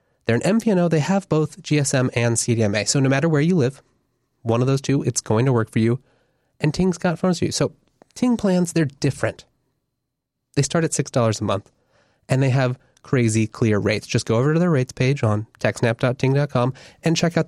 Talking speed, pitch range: 205 wpm, 120-165 Hz